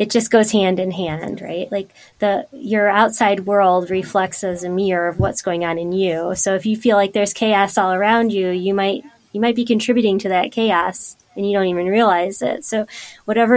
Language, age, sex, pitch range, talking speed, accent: English, 20-39, female, 180-215 Hz, 215 wpm, American